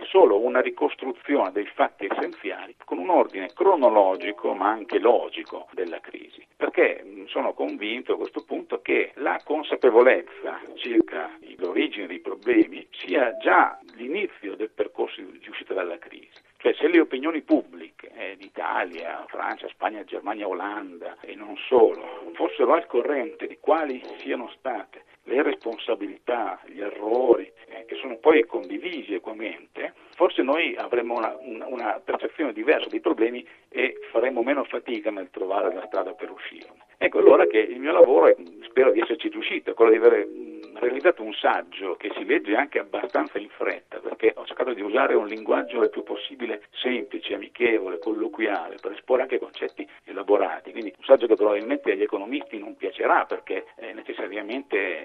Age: 50-69